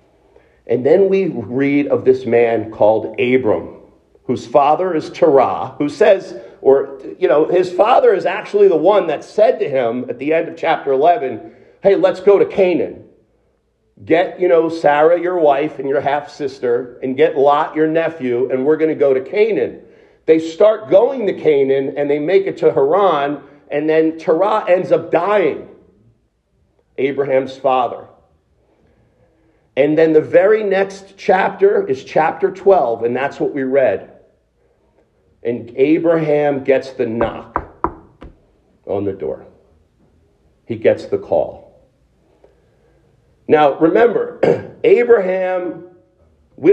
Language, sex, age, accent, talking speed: English, male, 50-69, American, 140 wpm